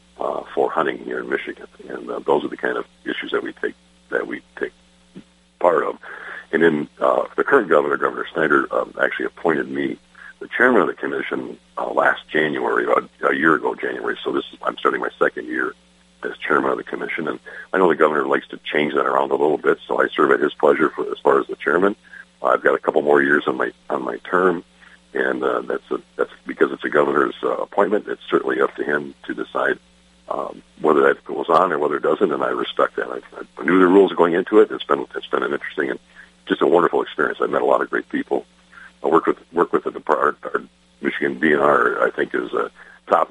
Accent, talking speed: American, 230 wpm